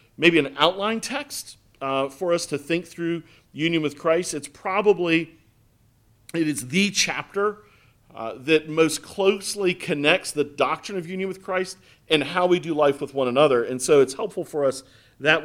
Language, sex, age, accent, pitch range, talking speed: English, male, 40-59, American, 120-165 Hz, 175 wpm